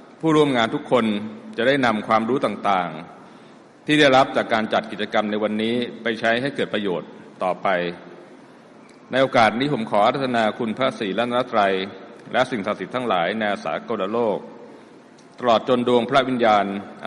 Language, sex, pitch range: Thai, male, 100-125 Hz